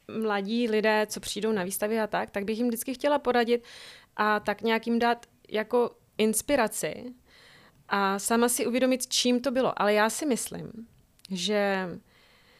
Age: 30-49